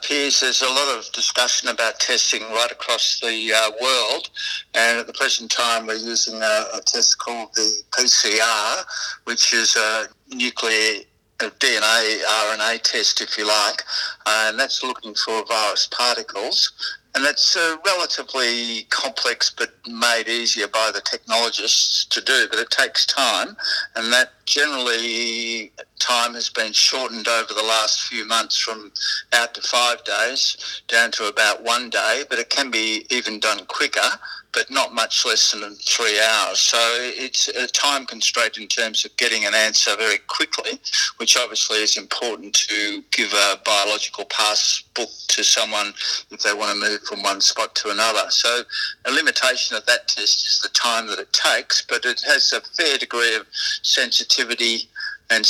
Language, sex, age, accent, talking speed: English, male, 60-79, Australian, 165 wpm